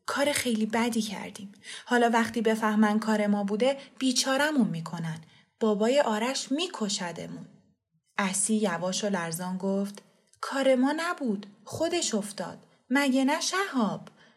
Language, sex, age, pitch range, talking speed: Persian, female, 20-39, 200-265 Hz, 120 wpm